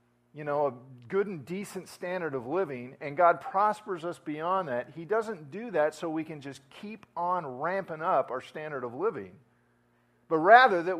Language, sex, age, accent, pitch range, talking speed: English, male, 50-69, American, 120-165 Hz, 185 wpm